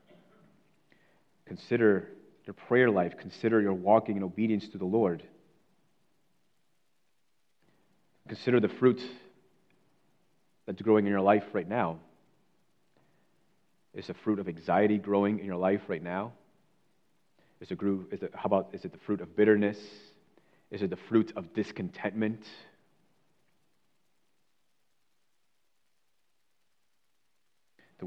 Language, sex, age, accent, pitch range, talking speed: English, male, 30-49, American, 100-115 Hz, 105 wpm